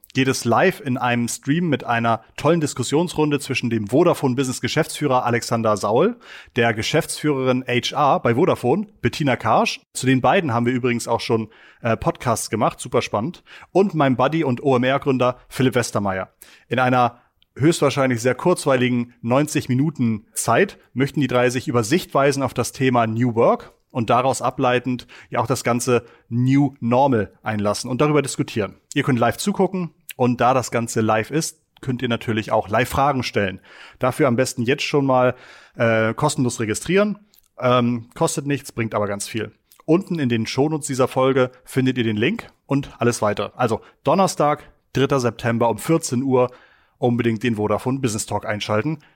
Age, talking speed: 30-49, 155 wpm